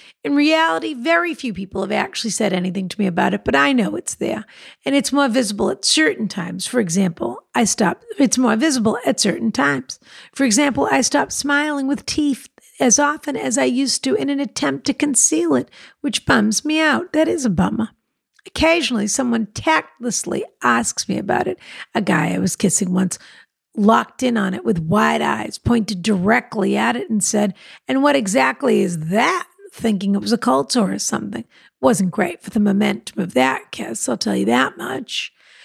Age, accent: 50-69, American